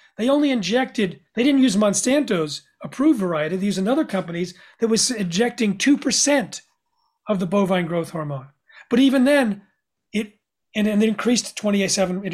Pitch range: 190-250 Hz